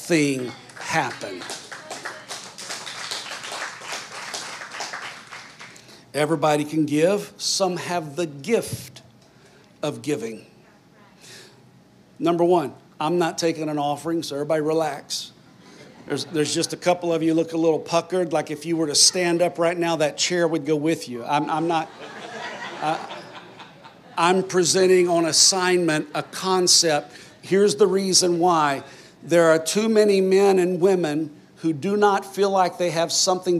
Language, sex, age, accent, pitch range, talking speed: English, male, 50-69, American, 155-180 Hz, 135 wpm